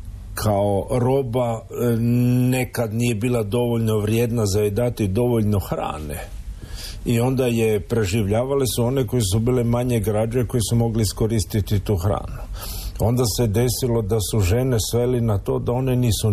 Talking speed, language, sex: 150 wpm, Croatian, male